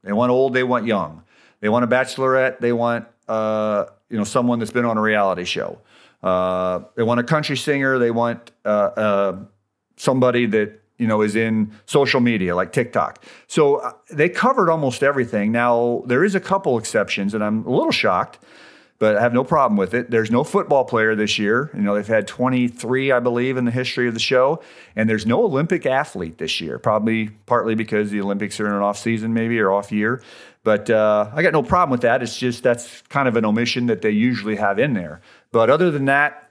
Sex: male